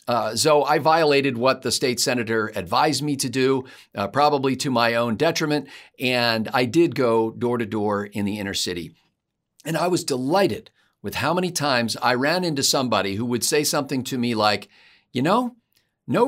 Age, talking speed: 50-69, 190 wpm